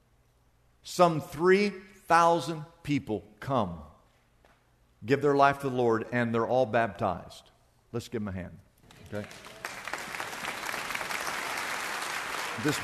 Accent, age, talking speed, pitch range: American, 50-69, 105 wpm, 155-240 Hz